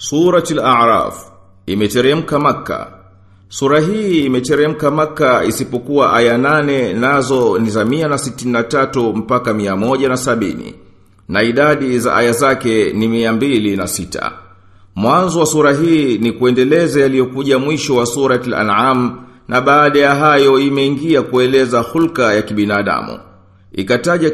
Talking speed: 120 wpm